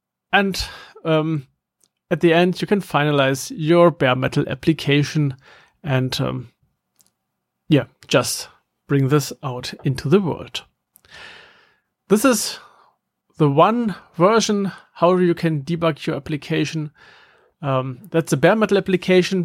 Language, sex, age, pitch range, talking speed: English, male, 40-59, 150-195 Hz, 115 wpm